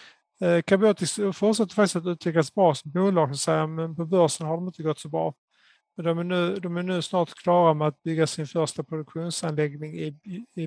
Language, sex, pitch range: Swedish, male, 155-180 Hz